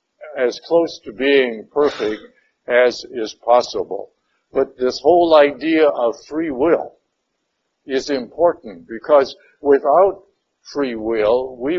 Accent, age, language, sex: American, 60-79, English, male